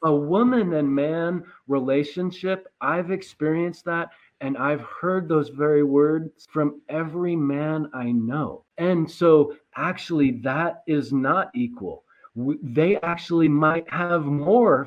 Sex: male